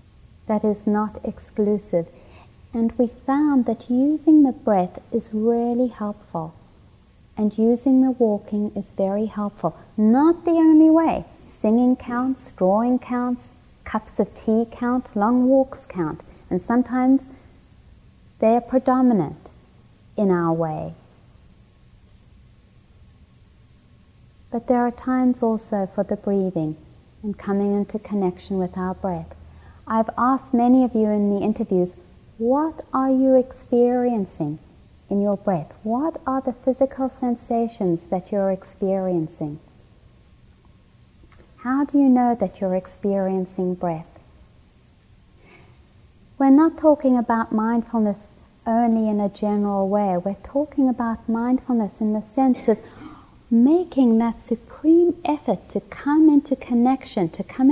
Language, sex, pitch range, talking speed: English, female, 200-255 Hz, 125 wpm